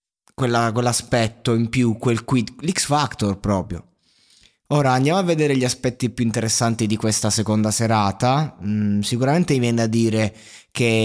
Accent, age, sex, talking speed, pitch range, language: native, 20-39, male, 145 wpm, 100-120 Hz, Italian